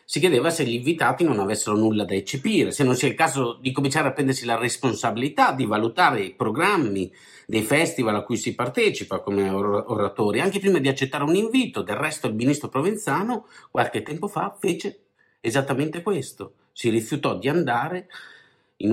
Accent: native